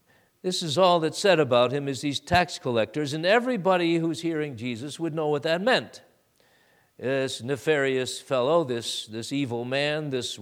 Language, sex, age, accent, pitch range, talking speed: English, male, 50-69, American, 130-170 Hz, 165 wpm